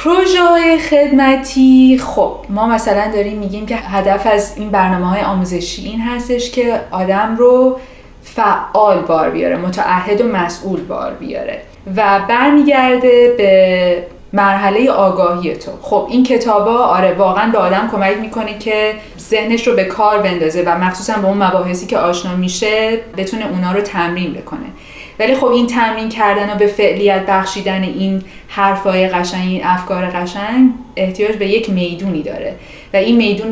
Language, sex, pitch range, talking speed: Persian, female, 190-245 Hz, 150 wpm